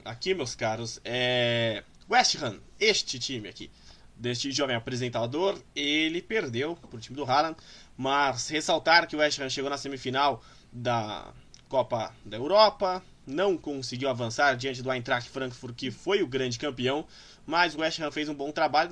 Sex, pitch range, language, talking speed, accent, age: male, 130-170 Hz, Portuguese, 160 wpm, Brazilian, 20-39